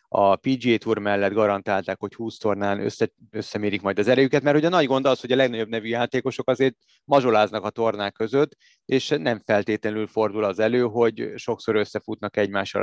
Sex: male